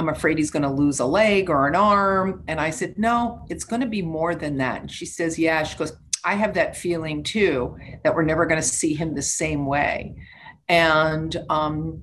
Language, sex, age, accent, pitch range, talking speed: English, female, 40-59, American, 150-185 Hz, 225 wpm